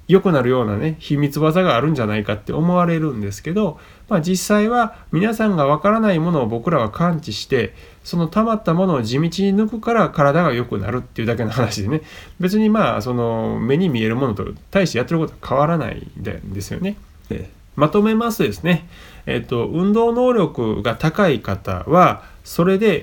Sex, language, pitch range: male, Japanese, 110-180 Hz